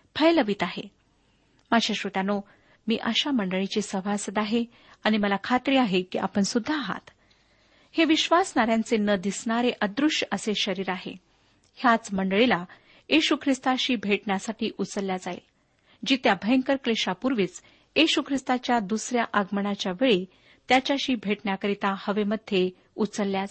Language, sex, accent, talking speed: Marathi, female, native, 110 wpm